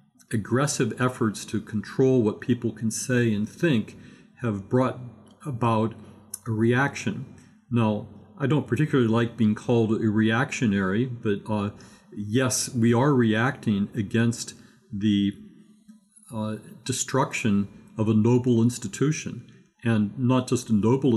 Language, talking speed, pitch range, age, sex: English, 120 wpm, 105-130 Hz, 50-69, male